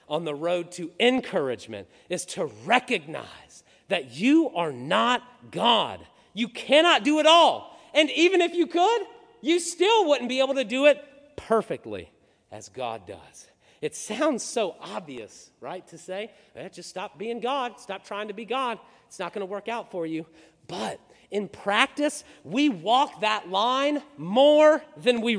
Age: 40-59